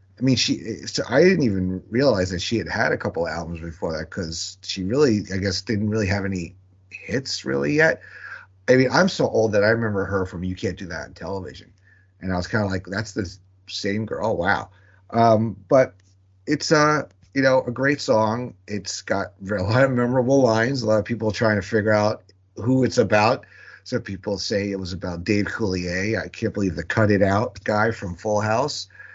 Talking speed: 215 wpm